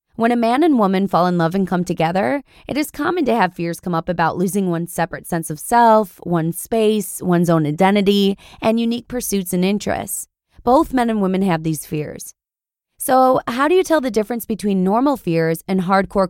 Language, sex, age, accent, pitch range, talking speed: English, female, 20-39, American, 180-240 Hz, 205 wpm